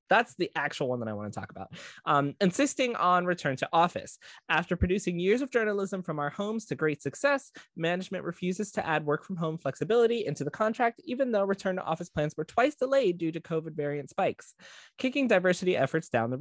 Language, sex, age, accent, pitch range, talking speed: English, male, 20-39, American, 140-190 Hz, 205 wpm